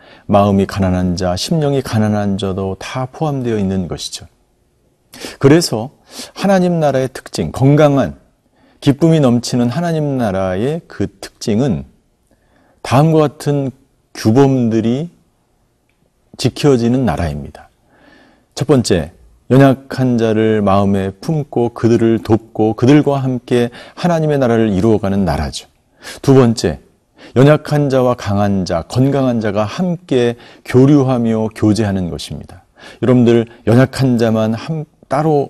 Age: 40-59